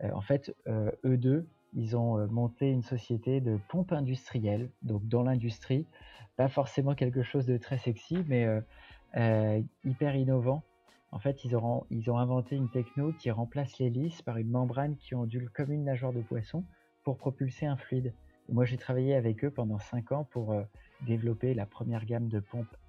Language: French